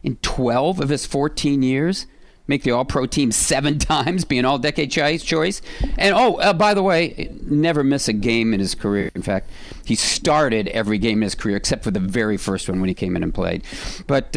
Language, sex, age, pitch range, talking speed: English, male, 50-69, 105-140 Hz, 215 wpm